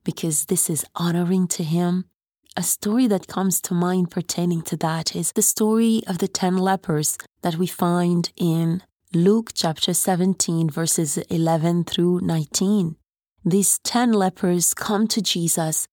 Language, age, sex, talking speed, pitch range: English, 30-49, female, 145 wpm, 170-205 Hz